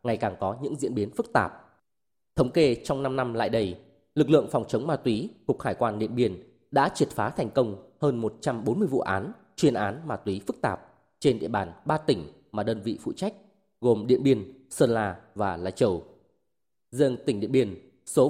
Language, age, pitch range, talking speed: Vietnamese, 20-39, 105-135 Hz, 210 wpm